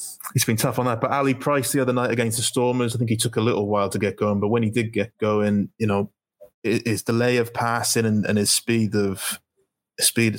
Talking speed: 245 wpm